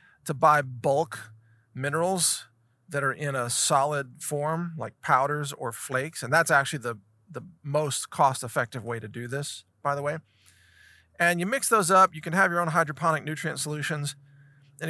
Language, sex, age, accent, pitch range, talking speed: English, male, 40-59, American, 130-170 Hz, 170 wpm